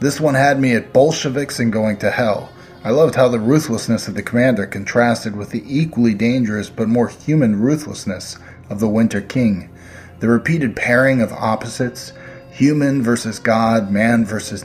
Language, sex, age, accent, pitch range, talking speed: English, male, 30-49, American, 105-130 Hz, 170 wpm